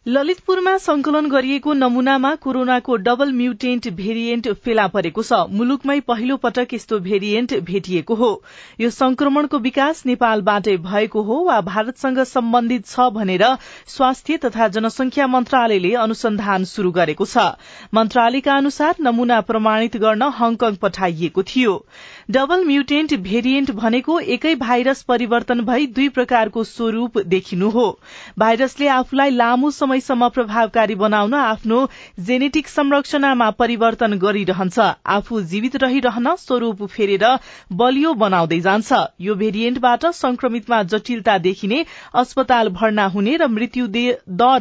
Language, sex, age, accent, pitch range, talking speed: English, female, 40-59, Indian, 215-265 Hz, 115 wpm